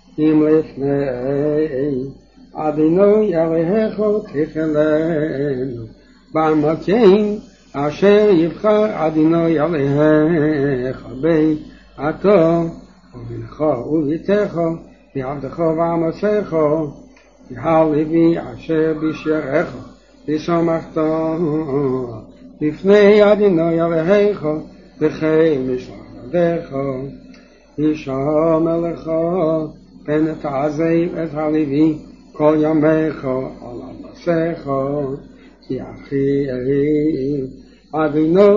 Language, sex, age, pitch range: English, male, 60-79, 150-165 Hz